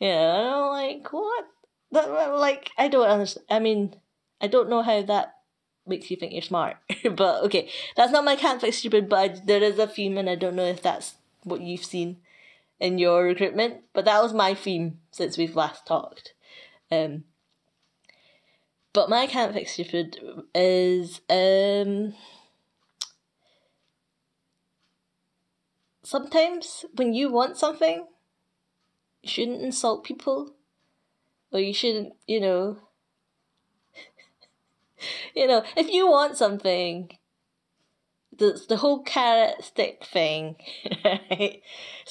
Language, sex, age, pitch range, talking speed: English, female, 20-39, 180-275 Hz, 130 wpm